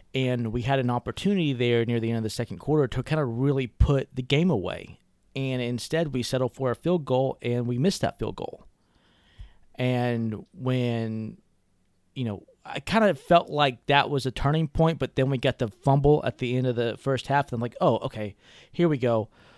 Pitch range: 115-140 Hz